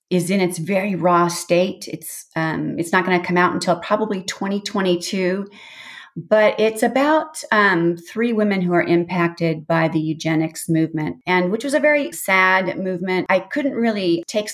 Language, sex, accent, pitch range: English, female, American, 160-200 Hz